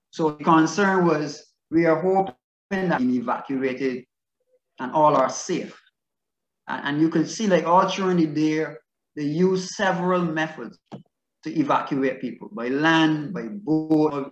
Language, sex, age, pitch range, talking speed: English, male, 30-49, 140-180 Hz, 145 wpm